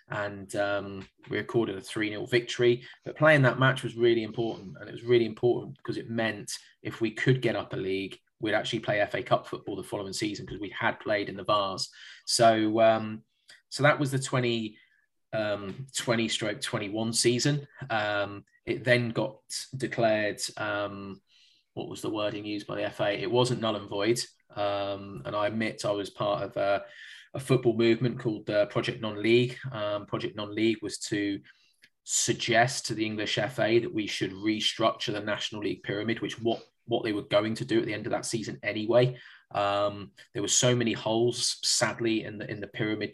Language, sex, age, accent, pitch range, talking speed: English, male, 20-39, British, 105-120 Hz, 190 wpm